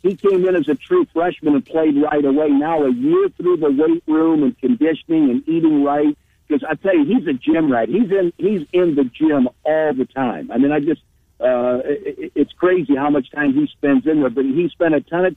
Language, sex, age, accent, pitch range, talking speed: English, male, 60-79, American, 140-190 Hz, 240 wpm